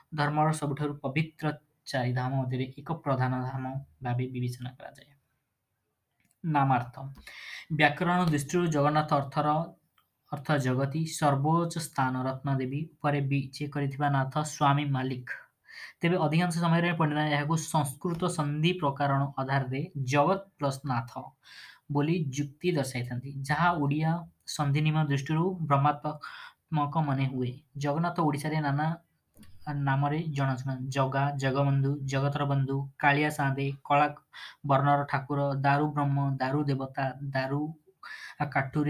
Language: Hindi